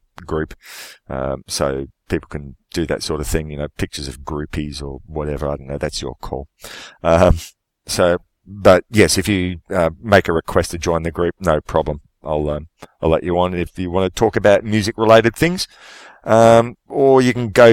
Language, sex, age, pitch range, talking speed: English, male, 40-59, 80-100 Hz, 200 wpm